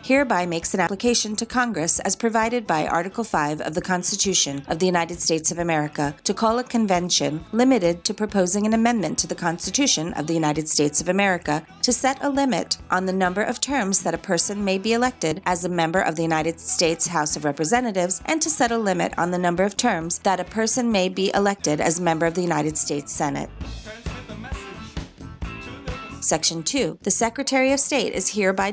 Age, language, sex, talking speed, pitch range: 30-49, English, female, 200 wpm, 165-215 Hz